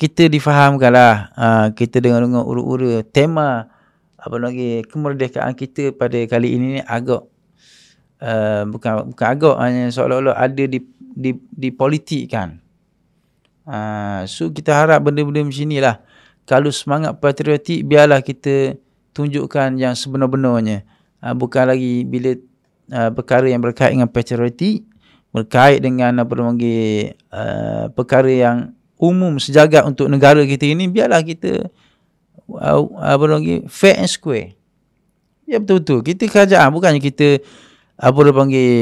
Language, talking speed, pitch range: Malay, 125 wpm, 120-150 Hz